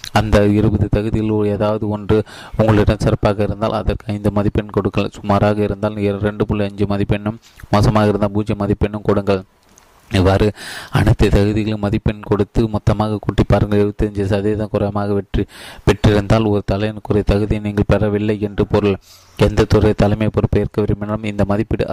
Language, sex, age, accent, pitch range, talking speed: Tamil, male, 20-39, native, 100-110 Hz, 135 wpm